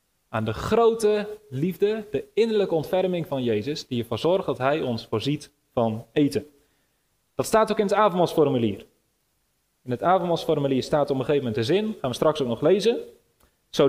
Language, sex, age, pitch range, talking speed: Dutch, male, 30-49, 125-190 Hz, 175 wpm